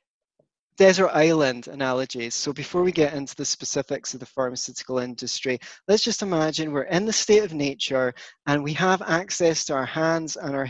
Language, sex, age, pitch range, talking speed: English, male, 20-39, 140-195 Hz, 180 wpm